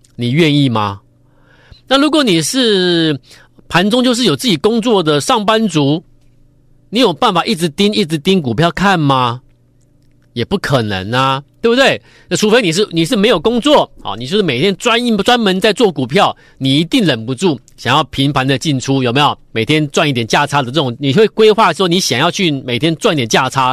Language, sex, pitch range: Chinese, male, 135-195 Hz